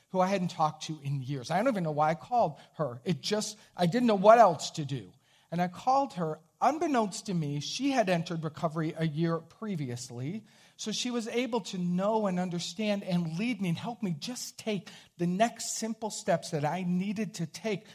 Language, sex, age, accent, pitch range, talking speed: English, male, 50-69, American, 160-220 Hz, 210 wpm